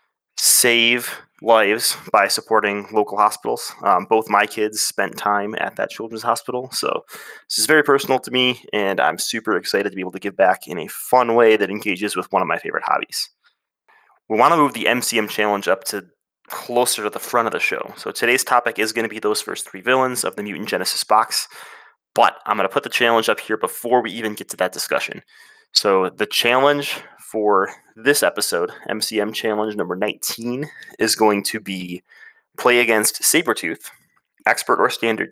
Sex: male